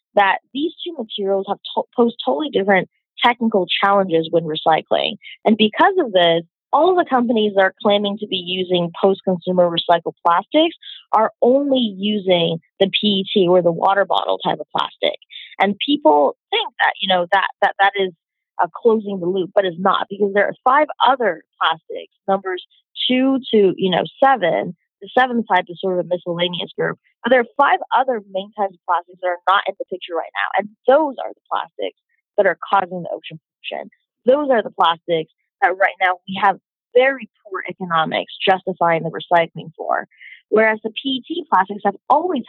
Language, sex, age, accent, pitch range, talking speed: English, female, 20-39, American, 180-245 Hz, 185 wpm